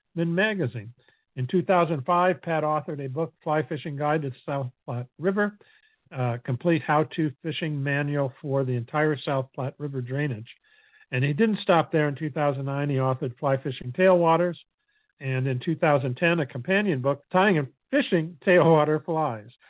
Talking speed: 155 wpm